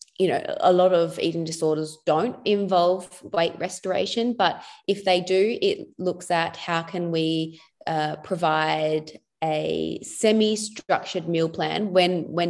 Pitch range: 155-180 Hz